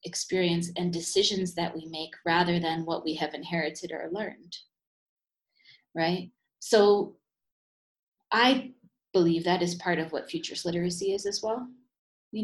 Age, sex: 20-39, female